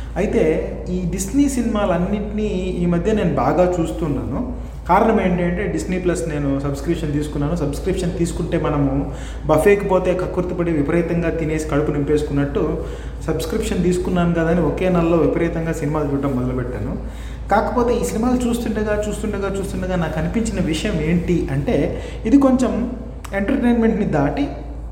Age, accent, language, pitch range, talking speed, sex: 30-49, native, Telugu, 150-190 Hz, 125 wpm, male